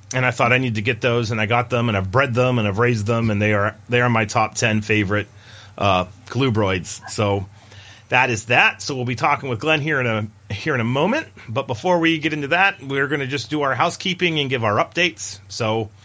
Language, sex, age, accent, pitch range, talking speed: English, male, 30-49, American, 105-145 Hz, 245 wpm